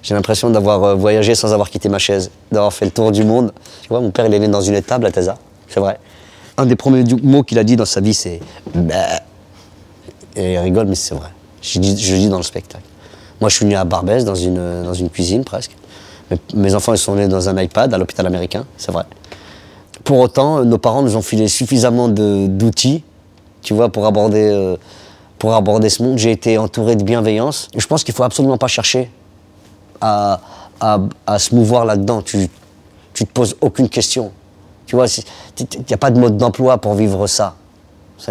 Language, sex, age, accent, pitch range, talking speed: French, male, 30-49, French, 100-115 Hz, 210 wpm